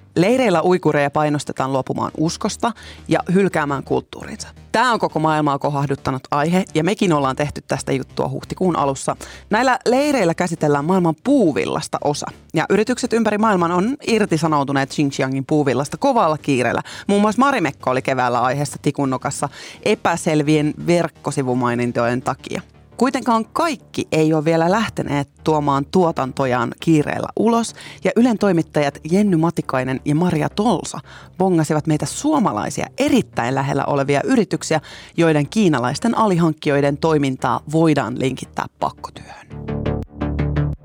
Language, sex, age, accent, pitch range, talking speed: Finnish, female, 30-49, native, 135-185 Hz, 120 wpm